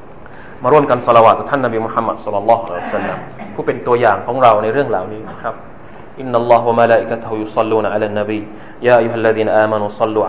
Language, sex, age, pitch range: Thai, male, 30-49, 110-120 Hz